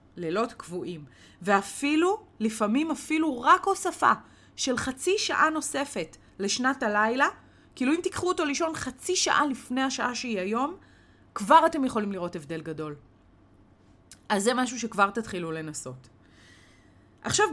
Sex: female